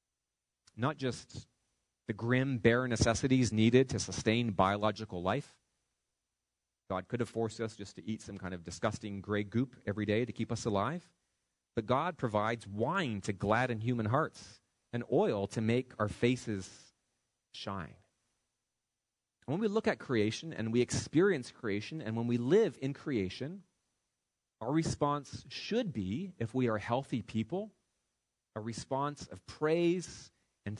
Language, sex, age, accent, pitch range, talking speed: English, male, 30-49, American, 100-135 Hz, 150 wpm